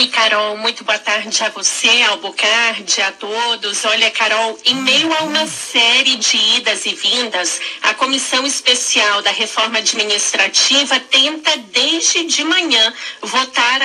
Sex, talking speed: female, 135 wpm